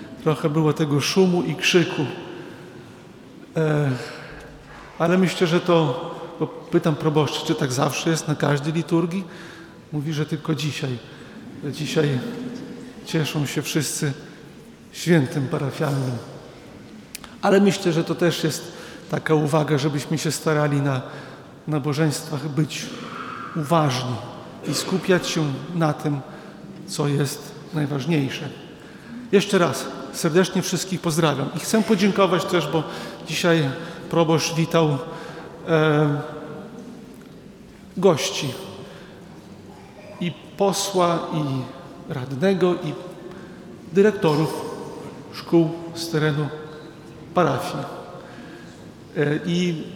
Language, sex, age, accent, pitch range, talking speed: Polish, male, 40-59, native, 150-180 Hz, 95 wpm